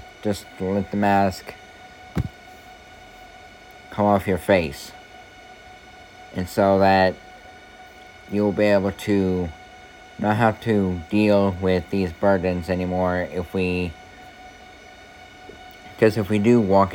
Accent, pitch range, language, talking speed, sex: American, 90-130 Hz, English, 105 wpm, male